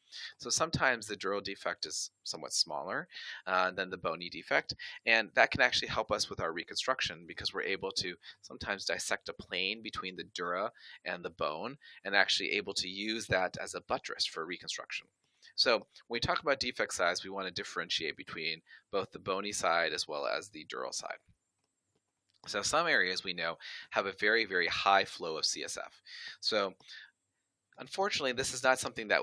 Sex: male